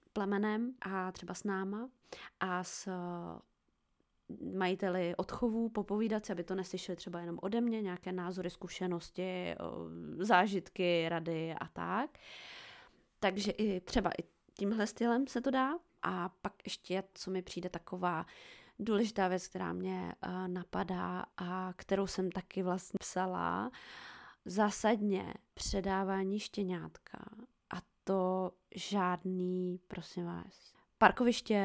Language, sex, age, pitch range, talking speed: Czech, female, 20-39, 180-195 Hz, 110 wpm